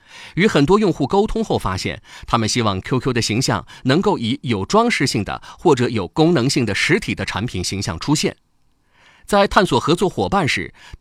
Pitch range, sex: 110-165 Hz, male